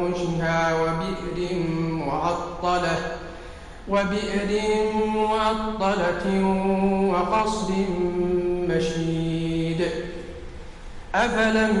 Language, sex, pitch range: Arabic, male, 165-195 Hz